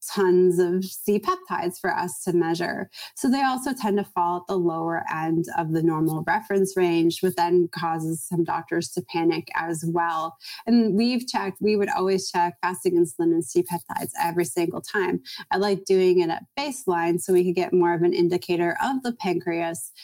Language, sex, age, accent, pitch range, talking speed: English, female, 20-39, American, 170-195 Hz, 185 wpm